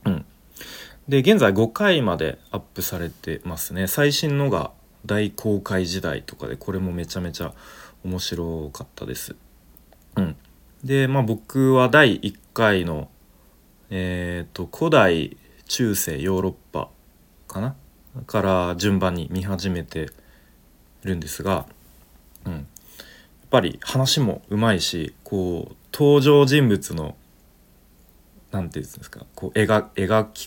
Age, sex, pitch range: 40-59, male, 85-115 Hz